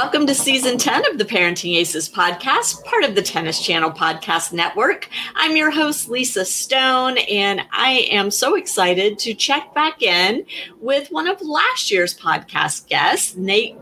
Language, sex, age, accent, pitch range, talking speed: English, female, 30-49, American, 175-255 Hz, 165 wpm